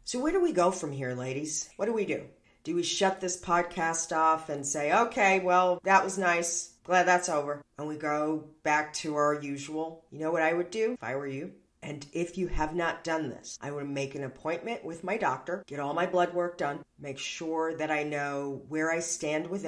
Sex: female